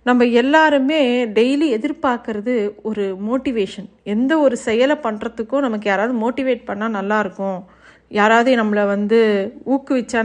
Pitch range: 215-265 Hz